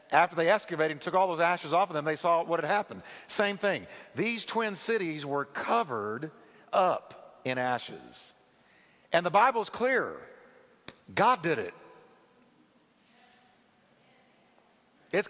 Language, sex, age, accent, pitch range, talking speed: English, male, 50-69, American, 160-210 Hz, 135 wpm